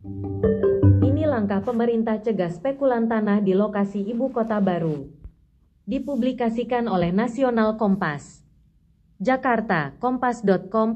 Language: Indonesian